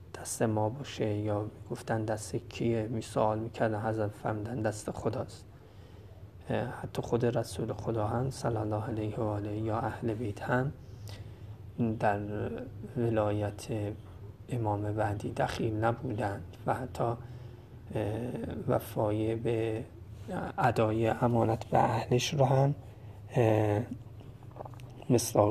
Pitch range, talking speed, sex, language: 105-120 Hz, 100 wpm, male, Persian